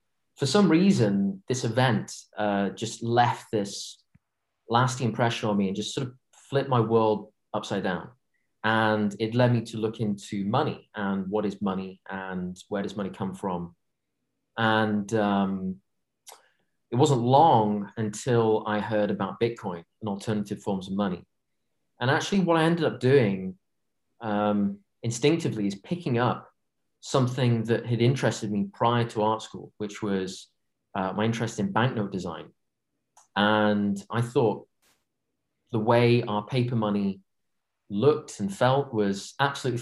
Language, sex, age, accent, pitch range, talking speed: English, male, 30-49, British, 100-120 Hz, 145 wpm